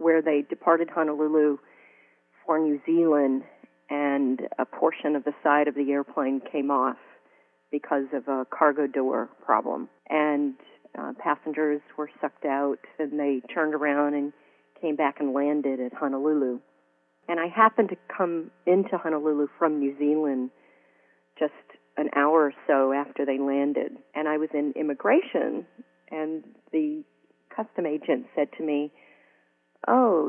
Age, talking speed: 40-59, 145 wpm